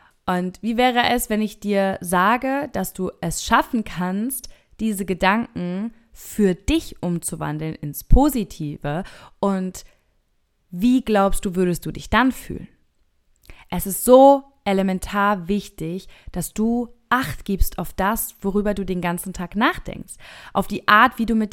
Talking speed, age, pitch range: 145 wpm, 20-39, 175-225 Hz